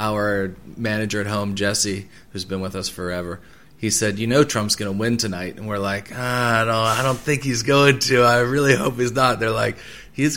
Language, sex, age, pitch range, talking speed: English, male, 20-39, 105-125 Hz, 230 wpm